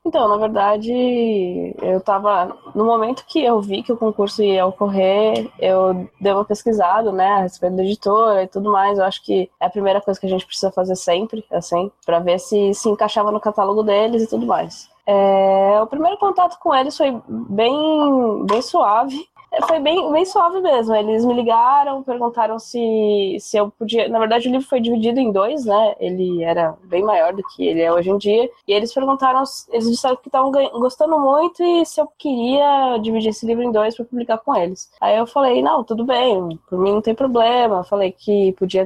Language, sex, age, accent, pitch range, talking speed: Portuguese, female, 10-29, Brazilian, 195-255 Hz, 200 wpm